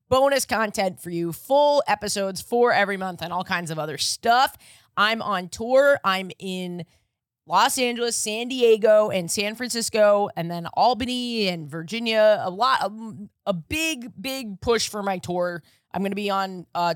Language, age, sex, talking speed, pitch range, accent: English, 20-39, female, 170 wpm, 175-235 Hz, American